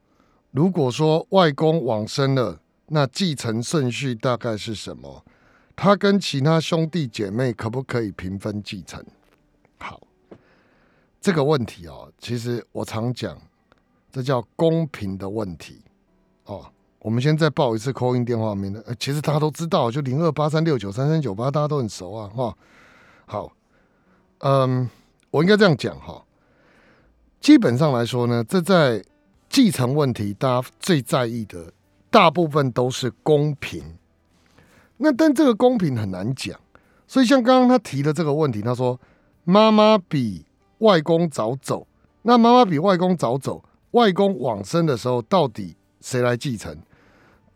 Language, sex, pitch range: Chinese, male, 110-165 Hz